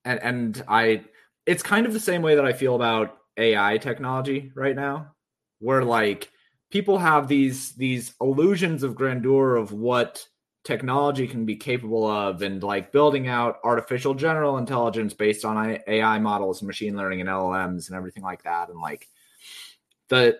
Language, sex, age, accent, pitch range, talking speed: English, male, 30-49, American, 110-150 Hz, 165 wpm